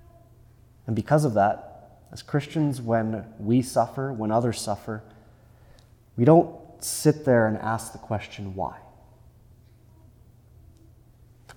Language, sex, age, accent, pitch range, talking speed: English, male, 30-49, American, 105-120 Hz, 115 wpm